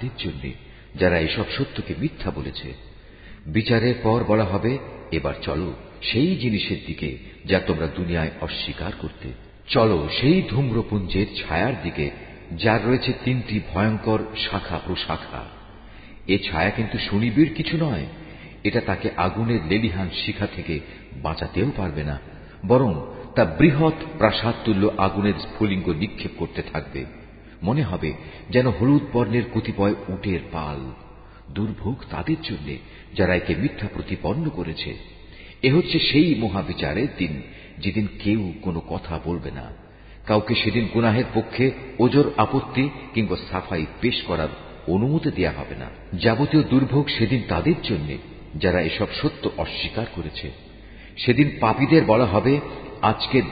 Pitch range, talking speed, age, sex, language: 85-120 Hz, 85 wpm, 50-69, male, Bengali